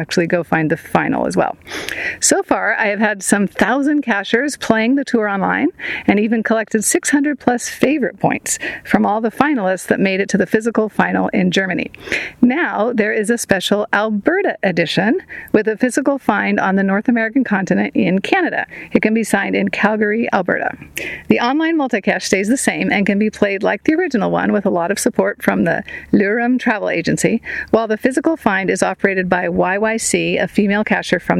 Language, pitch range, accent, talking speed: English, 200-250 Hz, American, 195 wpm